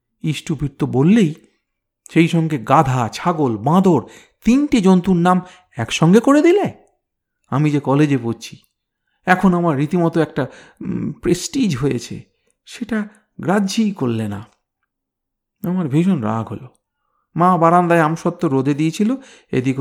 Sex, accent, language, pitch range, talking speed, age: male, native, Bengali, 115-185 Hz, 115 wpm, 50-69